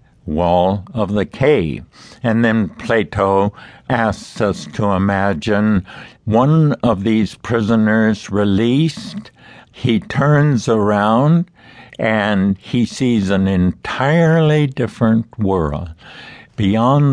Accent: American